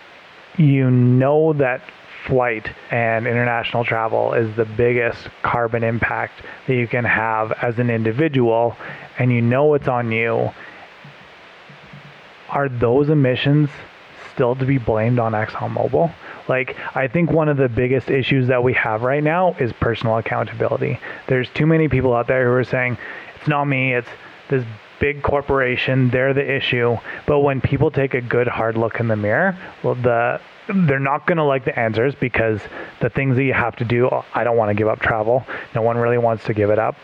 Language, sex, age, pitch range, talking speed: English, male, 30-49, 120-140 Hz, 180 wpm